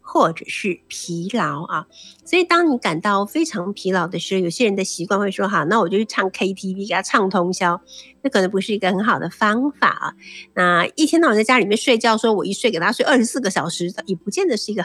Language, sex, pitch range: Chinese, female, 180-240 Hz